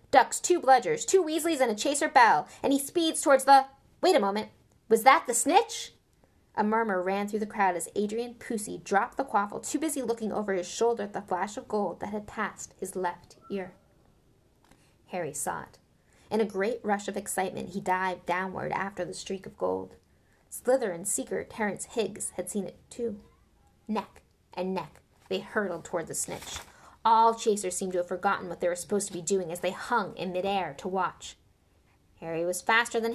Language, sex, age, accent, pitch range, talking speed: English, female, 20-39, American, 185-250 Hz, 195 wpm